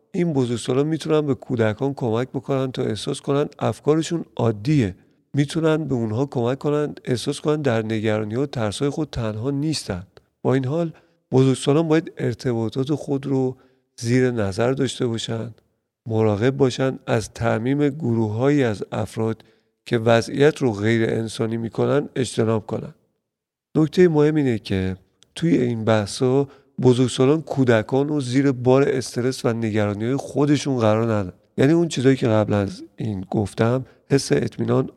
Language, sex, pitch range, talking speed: Persian, male, 115-140 Hz, 145 wpm